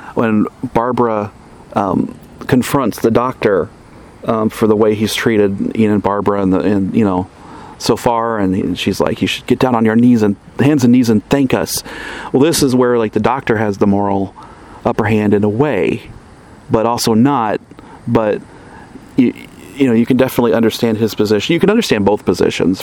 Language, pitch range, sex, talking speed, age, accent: English, 105-120 Hz, male, 185 wpm, 40-59, American